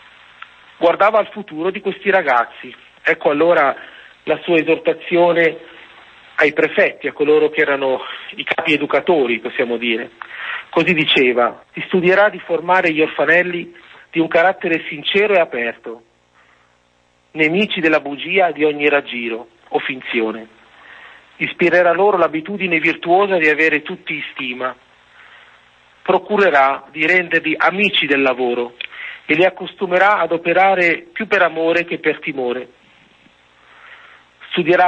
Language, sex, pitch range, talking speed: Italian, male, 135-175 Hz, 120 wpm